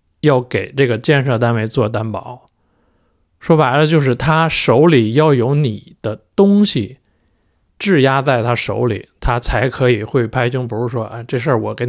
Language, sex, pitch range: Chinese, male, 100-145 Hz